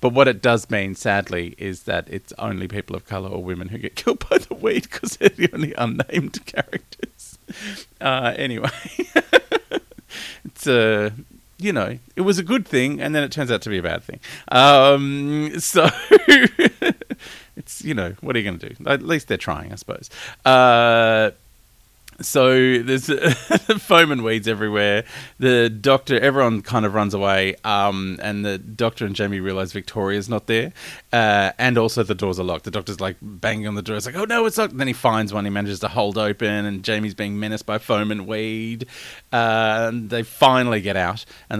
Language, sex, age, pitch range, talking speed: English, male, 30-49, 100-130 Hz, 195 wpm